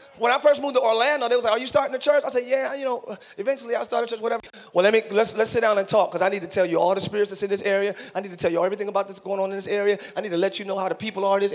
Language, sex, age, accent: English, male, 30-49, American